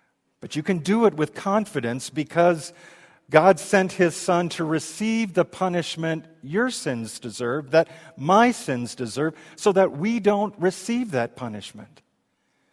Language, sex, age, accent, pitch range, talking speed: English, male, 50-69, American, 155-210 Hz, 135 wpm